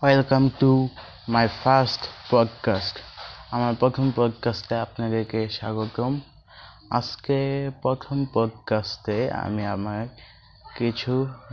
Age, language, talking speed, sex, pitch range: 20-39, Bengali, 85 wpm, male, 110-125 Hz